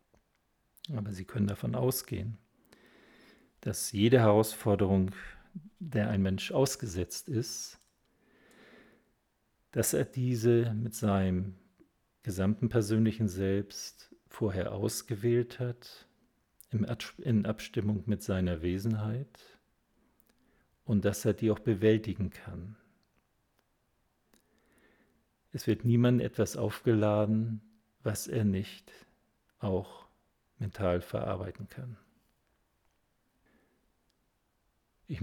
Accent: German